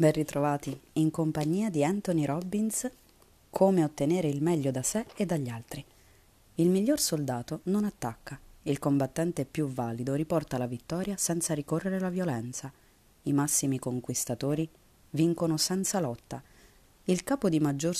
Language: Italian